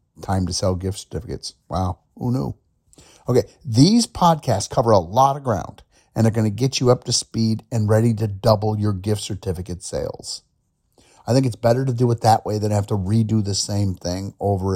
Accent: American